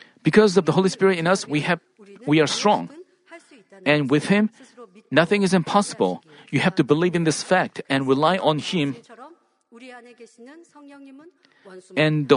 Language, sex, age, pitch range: Korean, male, 40-59, 160-230 Hz